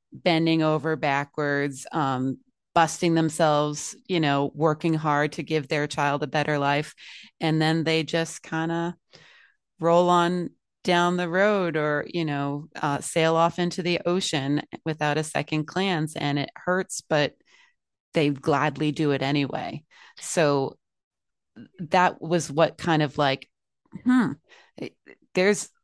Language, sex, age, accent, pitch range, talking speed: English, female, 30-49, American, 150-180 Hz, 135 wpm